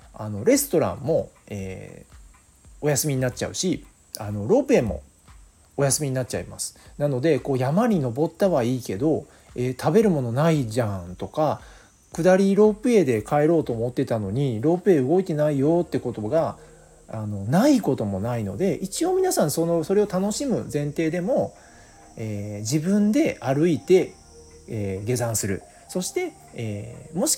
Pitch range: 105-170 Hz